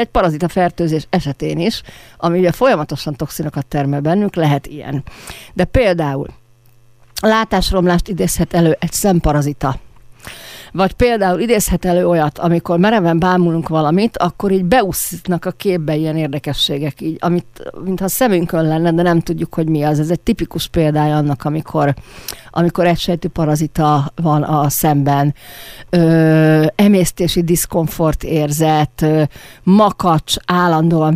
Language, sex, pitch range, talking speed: Hungarian, female, 150-185 Hz, 130 wpm